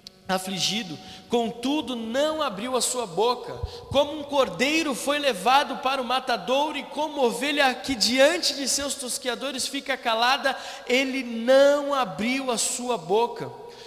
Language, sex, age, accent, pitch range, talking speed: Portuguese, male, 20-39, Brazilian, 235-285 Hz, 135 wpm